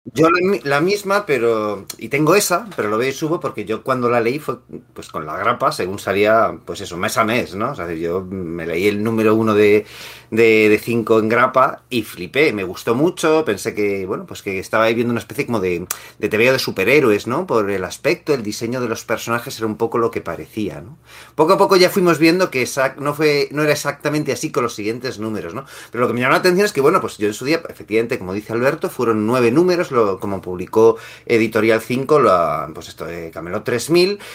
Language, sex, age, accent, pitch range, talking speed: Spanish, male, 30-49, Spanish, 110-150 Hz, 230 wpm